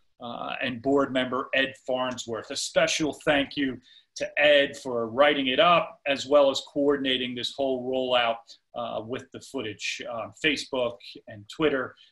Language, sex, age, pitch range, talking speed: English, male, 40-59, 135-175 Hz, 155 wpm